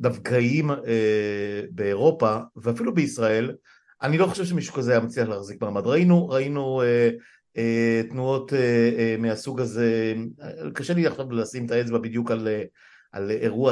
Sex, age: male, 50-69